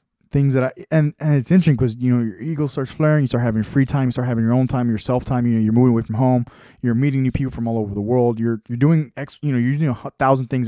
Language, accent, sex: English, American, male